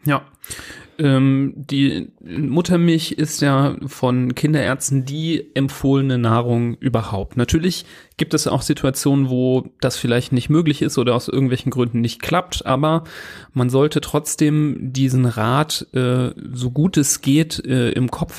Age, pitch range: 40-59, 120-145 Hz